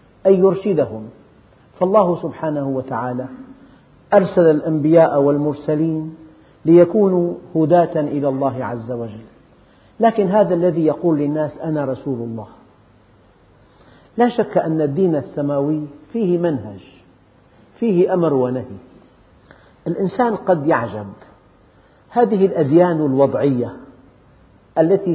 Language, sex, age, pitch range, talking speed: Arabic, male, 50-69, 125-175 Hz, 95 wpm